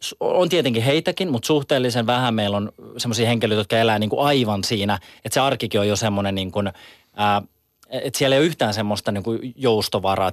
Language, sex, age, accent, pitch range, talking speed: Finnish, male, 30-49, native, 110-130 Hz, 190 wpm